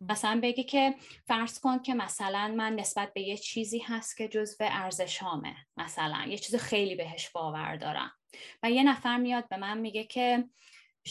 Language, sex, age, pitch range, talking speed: Persian, female, 20-39, 195-250 Hz, 175 wpm